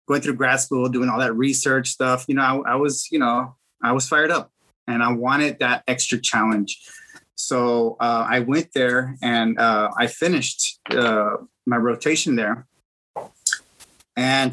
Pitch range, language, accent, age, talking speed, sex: 120-135 Hz, English, American, 20-39, 165 wpm, male